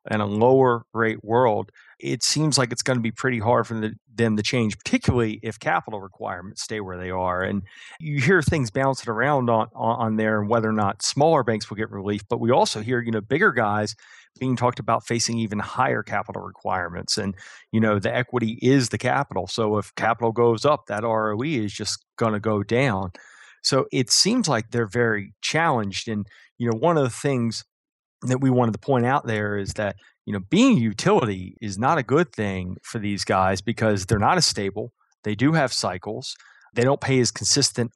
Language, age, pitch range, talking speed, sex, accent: English, 30-49, 105-130 Hz, 210 wpm, male, American